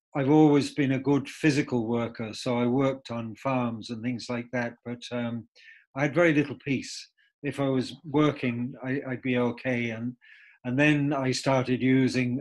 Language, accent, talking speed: English, British, 180 wpm